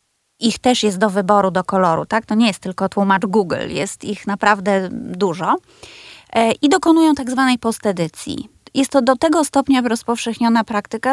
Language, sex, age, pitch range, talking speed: Polish, female, 20-39, 200-265 Hz, 160 wpm